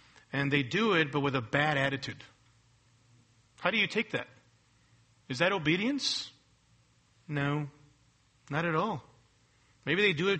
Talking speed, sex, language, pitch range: 145 wpm, male, English, 130-200 Hz